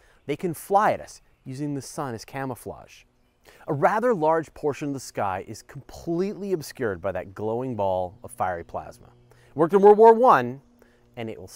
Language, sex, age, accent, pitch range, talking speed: English, male, 30-49, American, 110-165 Hz, 185 wpm